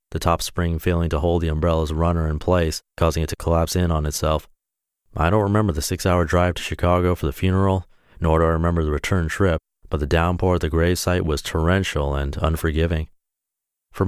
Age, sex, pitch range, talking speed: 30-49, male, 75-90 Hz, 210 wpm